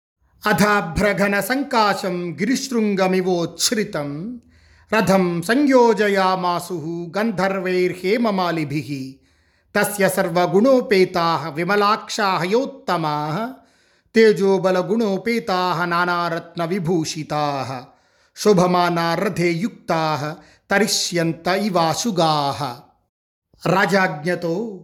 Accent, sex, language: native, male, Telugu